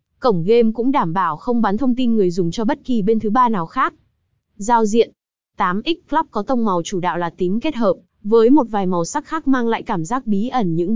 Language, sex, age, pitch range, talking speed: Vietnamese, female, 20-39, 195-250 Hz, 245 wpm